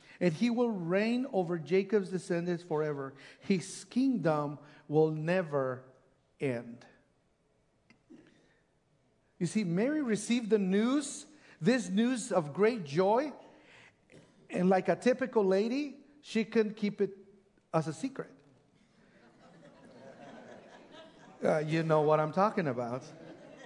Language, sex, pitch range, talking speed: English, male, 175-225 Hz, 110 wpm